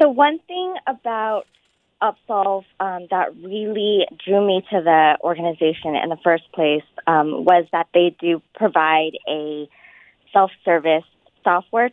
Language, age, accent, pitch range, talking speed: English, 20-39, American, 160-215 Hz, 130 wpm